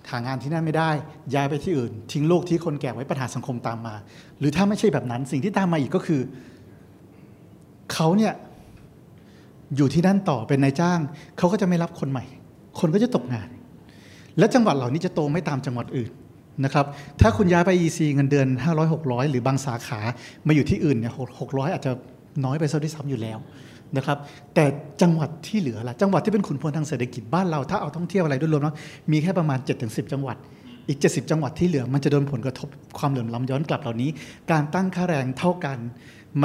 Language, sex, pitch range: Thai, male, 130-165 Hz